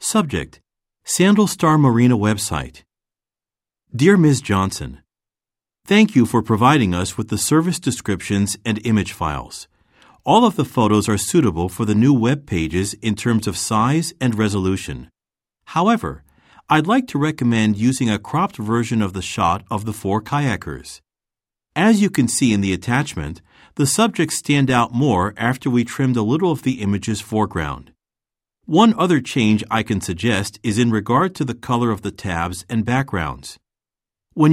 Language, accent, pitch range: Japanese, American, 100-145 Hz